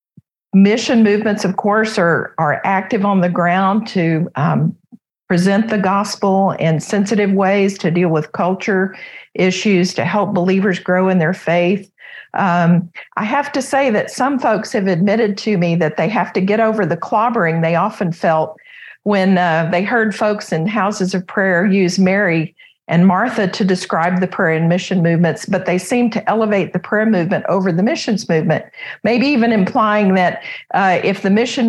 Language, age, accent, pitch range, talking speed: English, 50-69, American, 175-215 Hz, 175 wpm